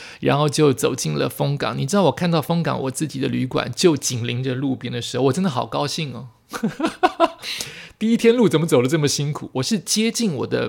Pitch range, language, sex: 130-180 Hz, Chinese, male